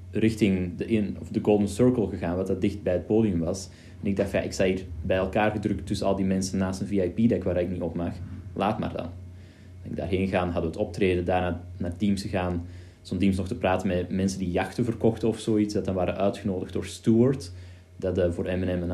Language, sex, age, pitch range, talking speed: Dutch, male, 20-39, 90-100 Hz, 230 wpm